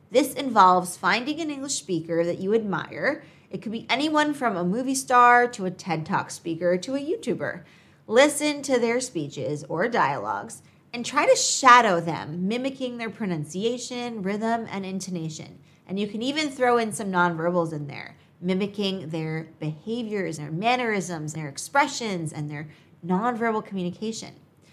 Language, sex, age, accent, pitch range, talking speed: English, female, 30-49, American, 170-230 Hz, 155 wpm